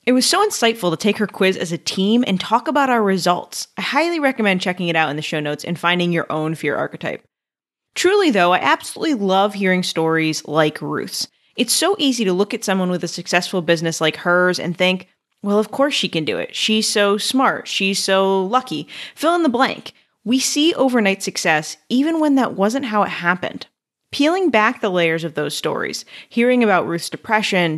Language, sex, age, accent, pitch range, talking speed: English, female, 20-39, American, 180-265 Hz, 205 wpm